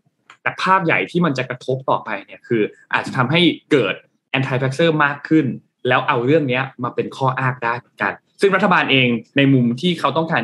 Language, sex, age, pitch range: Thai, male, 20-39, 125-160 Hz